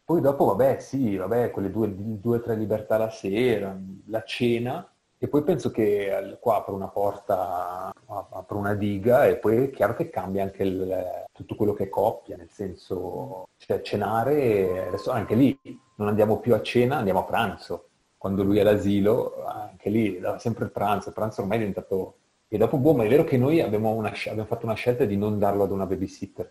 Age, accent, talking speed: 30-49, native, 200 wpm